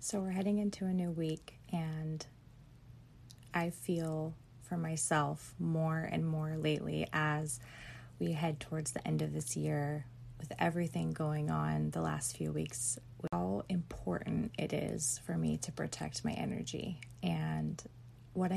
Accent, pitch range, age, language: American, 120-170 Hz, 20-39, English